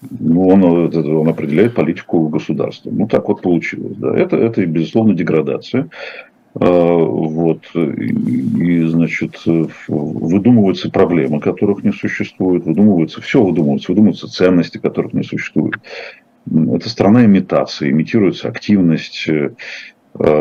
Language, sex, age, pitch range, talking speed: Russian, male, 50-69, 80-95 Hz, 105 wpm